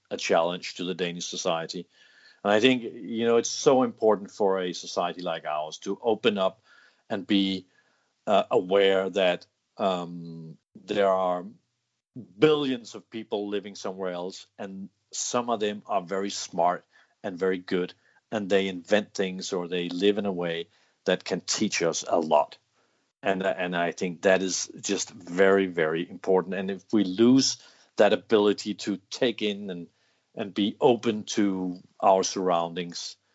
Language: English